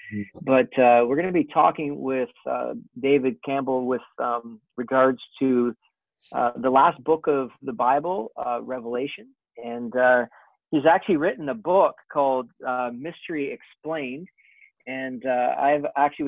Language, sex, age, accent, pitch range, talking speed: English, male, 40-59, American, 120-140 Hz, 145 wpm